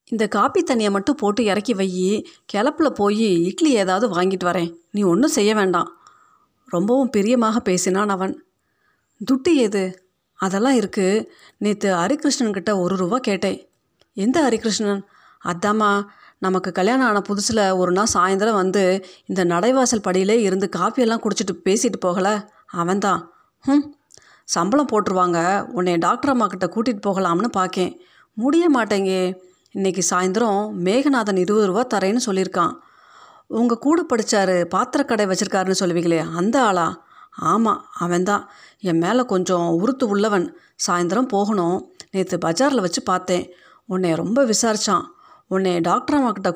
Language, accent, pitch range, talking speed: Tamil, native, 185-235 Hz, 120 wpm